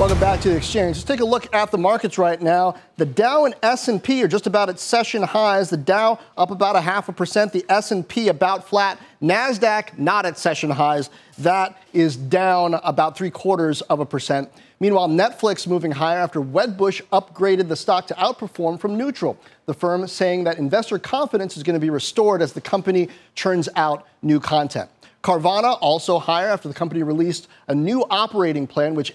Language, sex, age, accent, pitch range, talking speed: English, male, 40-59, American, 160-205 Hz, 190 wpm